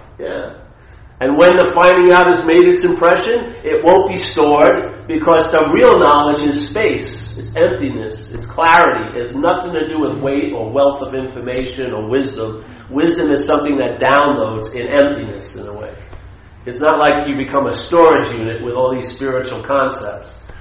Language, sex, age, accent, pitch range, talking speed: English, male, 50-69, American, 115-155 Hz, 175 wpm